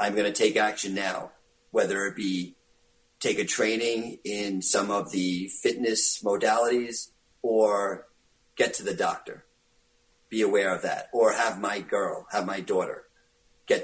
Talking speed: 150 wpm